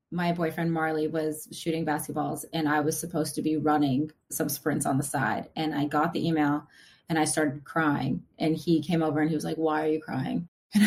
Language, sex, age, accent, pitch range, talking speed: English, female, 20-39, American, 155-190 Hz, 220 wpm